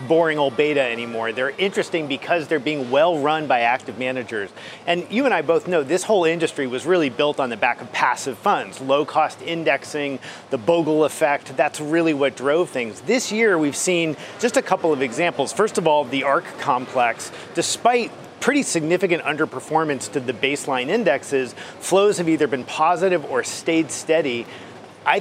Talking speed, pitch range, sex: 175 wpm, 135-175 Hz, male